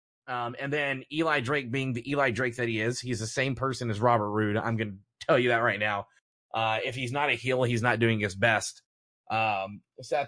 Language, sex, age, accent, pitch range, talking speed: English, male, 30-49, American, 115-140 Hz, 235 wpm